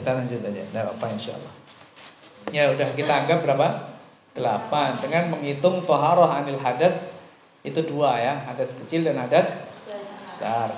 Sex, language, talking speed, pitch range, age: male, Indonesian, 145 wpm, 140-180 Hz, 50-69